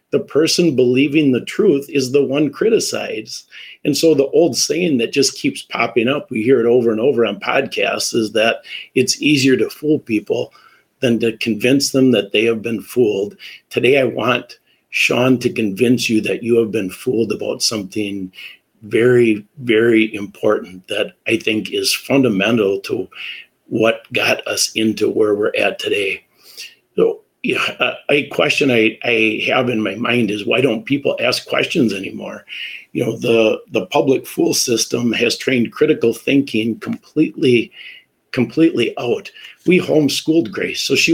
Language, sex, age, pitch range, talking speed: English, male, 50-69, 115-155 Hz, 160 wpm